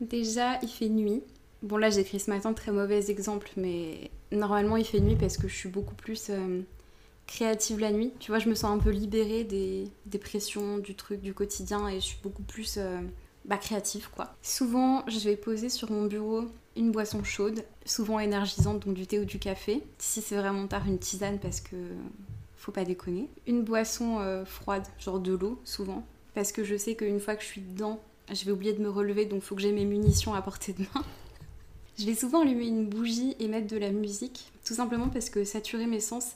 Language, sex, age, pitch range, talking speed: French, female, 20-39, 200-225 Hz, 220 wpm